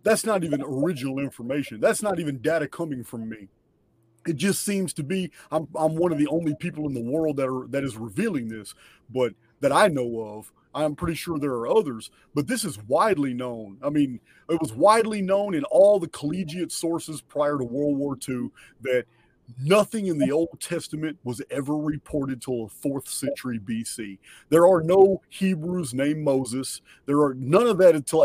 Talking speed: 195 wpm